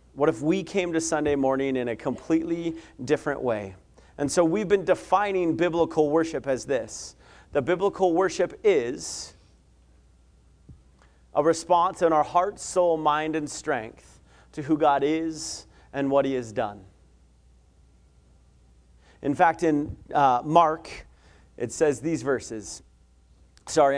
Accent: American